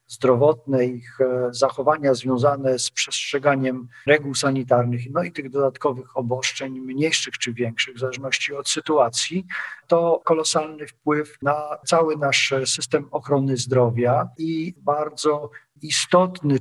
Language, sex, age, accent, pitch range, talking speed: Polish, male, 40-59, native, 125-155 Hz, 115 wpm